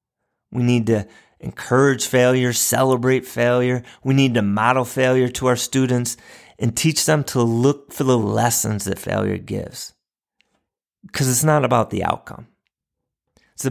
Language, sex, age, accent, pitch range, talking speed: English, male, 30-49, American, 120-145 Hz, 145 wpm